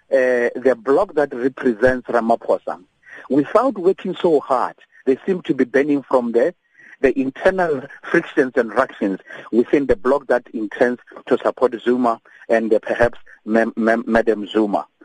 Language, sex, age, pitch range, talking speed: English, male, 50-69, 120-155 Hz, 150 wpm